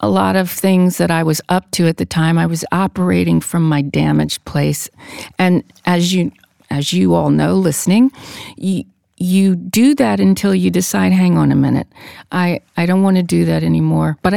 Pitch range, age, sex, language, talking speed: 155-205 Hz, 50-69, female, English, 195 wpm